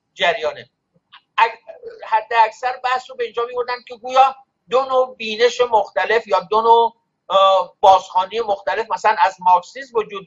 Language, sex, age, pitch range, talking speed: Persian, male, 50-69, 175-225 Hz, 135 wpm